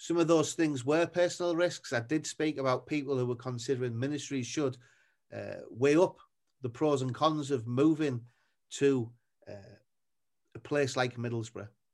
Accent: British